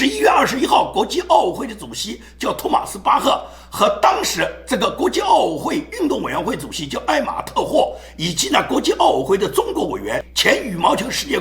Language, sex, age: Chinese, male, 50-69